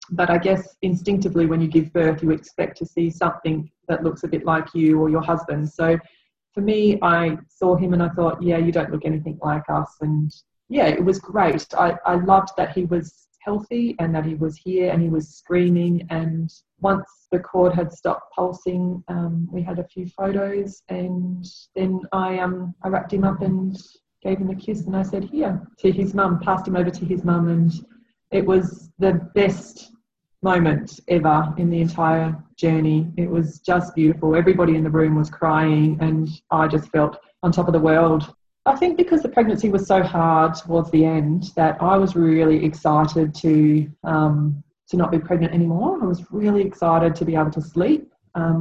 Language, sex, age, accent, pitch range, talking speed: English, female, 20-39, Australian, 160-185 Hz, 200 wpm